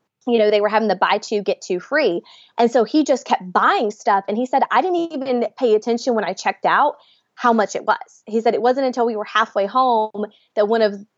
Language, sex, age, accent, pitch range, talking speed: English, female, 20-39, American, 200-255 Hz, 245 wpm